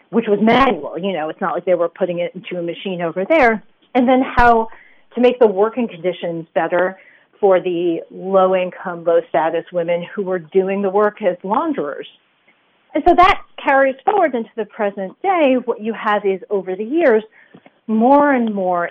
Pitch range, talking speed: 180-245 Hz, 180 wpm